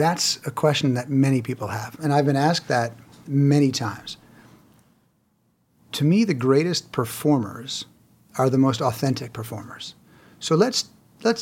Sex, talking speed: male, 140 wpm